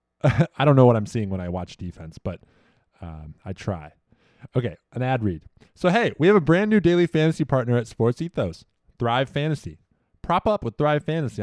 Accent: American